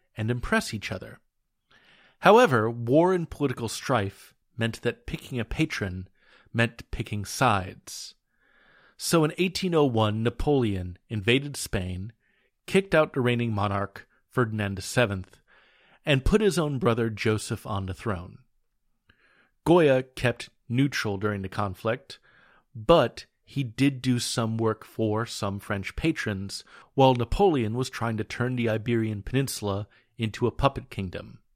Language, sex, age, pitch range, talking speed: English, male, 40-59, 105-130 Hz, 130 wpm